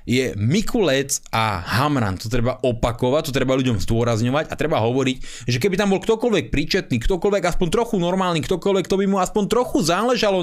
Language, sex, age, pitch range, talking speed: Slovak, male, 30-49, 120-190 Hz, 180 wpm